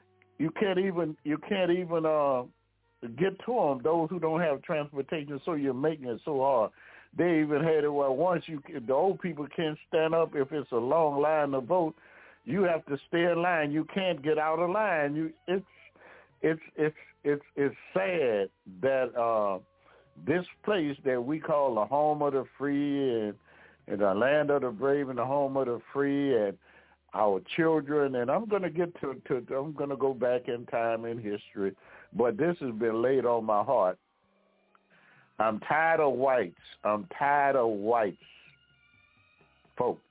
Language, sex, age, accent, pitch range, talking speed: English, male, 60-79, American, 120-160 Hz, 180 wpm